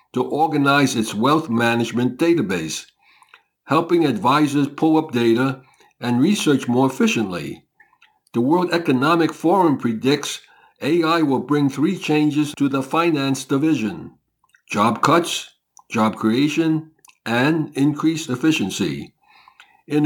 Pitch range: 120-155 Hz